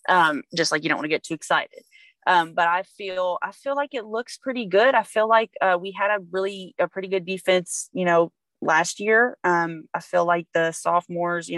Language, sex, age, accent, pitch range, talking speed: English, female, 20-39, American, 160-185 Hz, 230 wpm